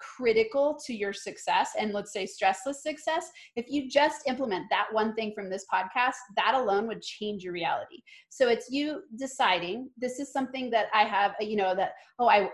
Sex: female